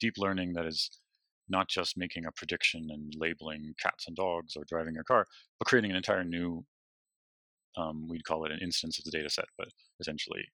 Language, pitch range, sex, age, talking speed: English, 80-95 Hz, male, 30-49, 200 wpm